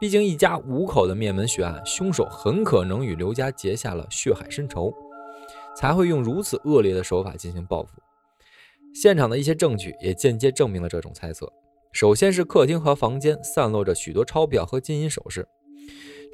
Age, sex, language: 20-39, male, Chinese